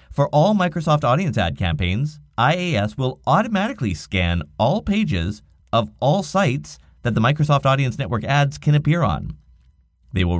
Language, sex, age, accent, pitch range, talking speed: English, male, 30-49, American, 90-145 Hz, 150 wpm